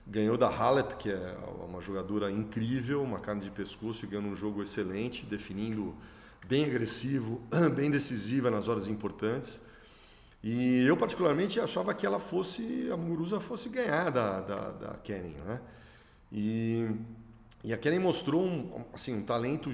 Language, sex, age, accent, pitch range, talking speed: Portuguese, male, 40-59, Brazilian, 105-130 Hz, 150 wpm